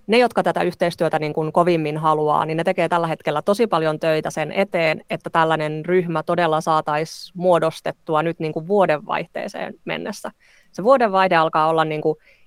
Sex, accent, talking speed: female, native, 170 wpm